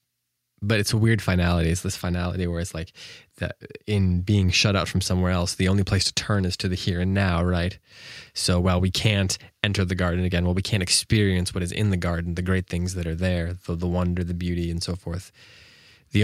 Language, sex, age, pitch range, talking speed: English, male, 20-39, 90-105 Hz, 230 wpm